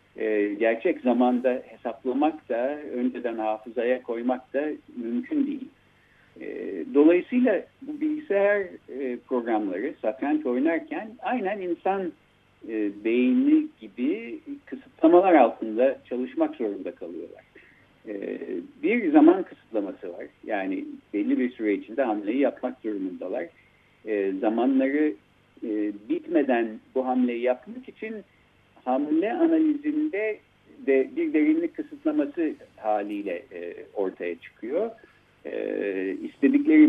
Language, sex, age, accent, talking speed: Turkish, male, 60-79, native, 90 wpm